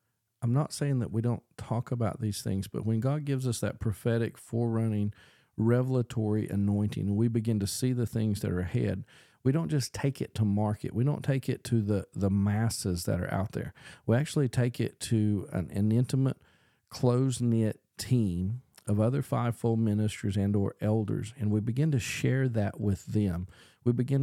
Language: English